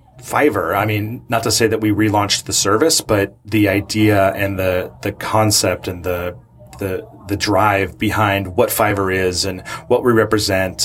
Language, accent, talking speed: English, American, 170 wpm